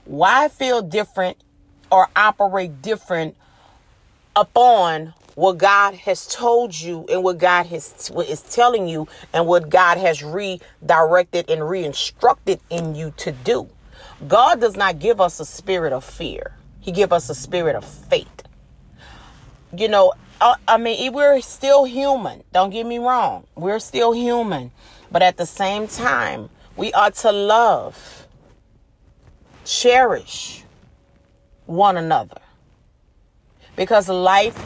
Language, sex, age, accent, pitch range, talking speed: English, female, 40-59, American, 175-235 Hz, 130 wpm